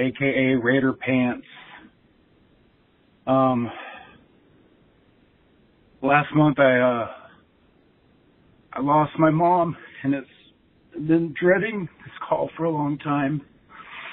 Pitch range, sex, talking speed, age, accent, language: 130-155 Hz, male, 95 wpm, 50-69, American, English